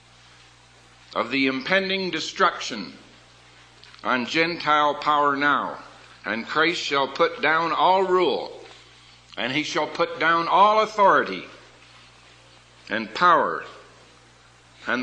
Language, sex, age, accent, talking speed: English, male, 60-79, American, 100 wpm